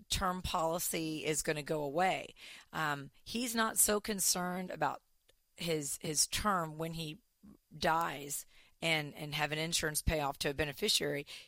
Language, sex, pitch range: English, female, 155-195 Hz